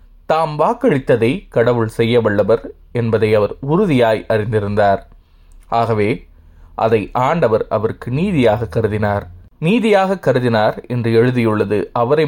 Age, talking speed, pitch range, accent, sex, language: 20-39, 100 wpm, 105-125 Hz, native, male, Tamil